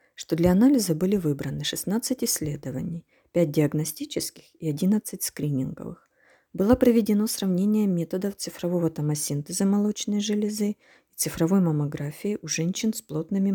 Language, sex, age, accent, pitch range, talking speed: Ukrainian, female, 40-59, native, 155-210 Hz, 120 wpm